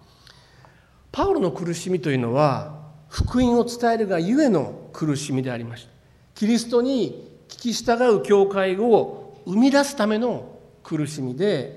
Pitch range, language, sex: 130-200 Hz, Japanese, male